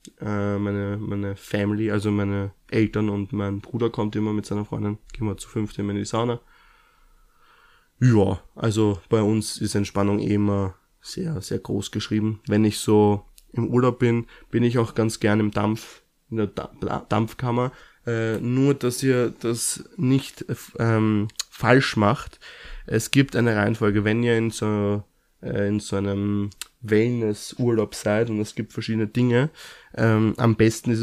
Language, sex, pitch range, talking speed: German, male, 105-120 Hz, 155 wpm